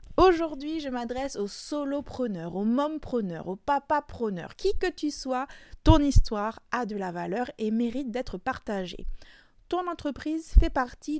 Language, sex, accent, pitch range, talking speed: French, female, French, 205-290 Hz, 160 wpm